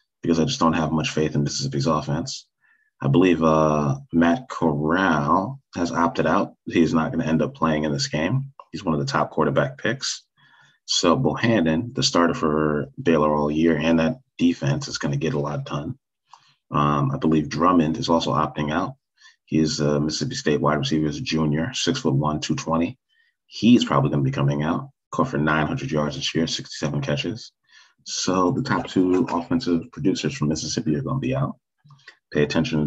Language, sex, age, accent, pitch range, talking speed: English, male, 30-49, American, 75-80 Hz, 190 wpm